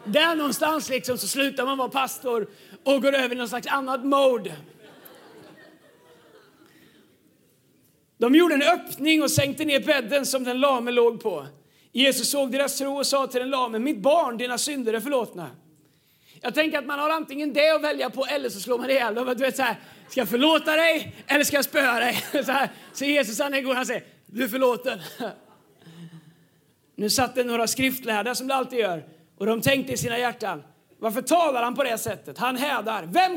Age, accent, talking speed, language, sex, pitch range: 30-49, native, 195 wpm, Swedish, male, 235-285 Hz